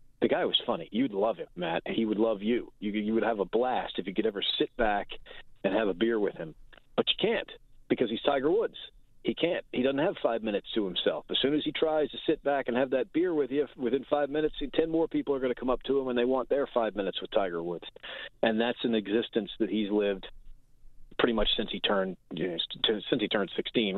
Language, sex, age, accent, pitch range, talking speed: English, male, 40-59, American, 105-140 Hz, 250 wpm